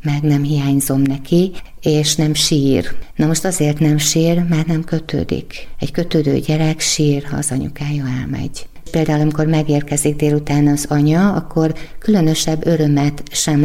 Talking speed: 145 wpm